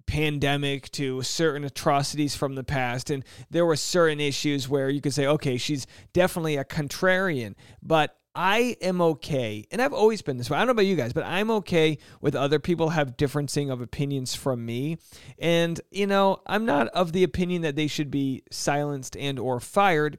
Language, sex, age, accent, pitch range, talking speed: English, male, 40-59, American, 140-185 Hz, 195 wpm